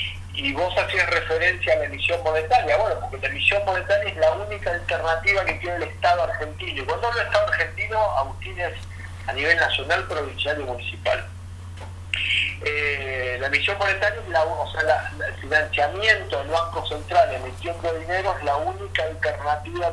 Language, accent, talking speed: Spanish, Argentinian, 170 wpm